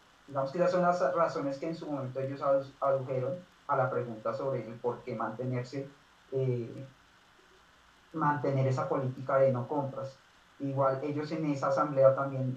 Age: 30-49